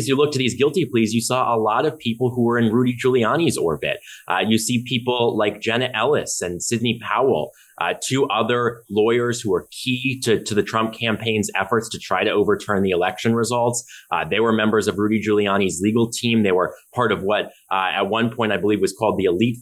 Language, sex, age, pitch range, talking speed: English, male, 30-49, 105-125 Hz, 220 wpm